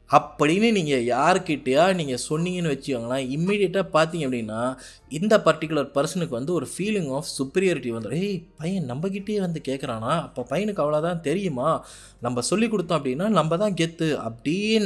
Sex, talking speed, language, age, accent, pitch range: male, 145 wpm, Tamil, 20-39, native, 130-185 Hz